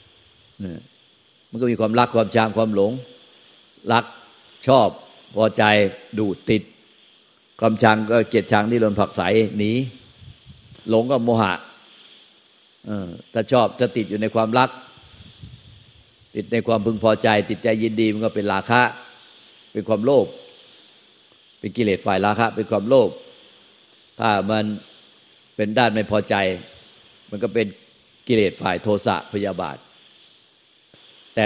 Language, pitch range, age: Thai, 105-120 Hz, 50-69